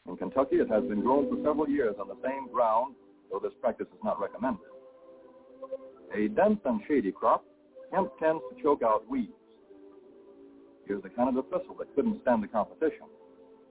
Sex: male